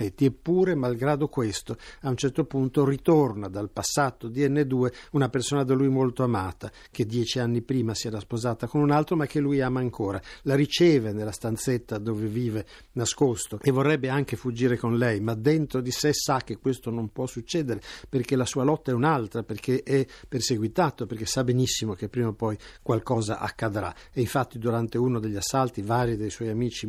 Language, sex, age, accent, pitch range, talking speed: Italian, male, 60-79, native, 115-140 Hz, 185 wpm